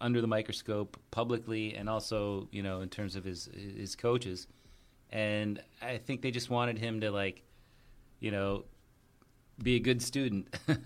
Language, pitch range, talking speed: English, 100-120 Hz, 160 wpm